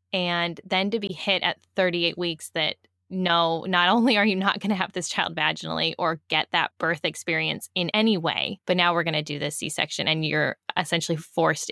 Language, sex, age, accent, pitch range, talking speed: English, female, 10-29, American, 160-190 Hz, 210 wpm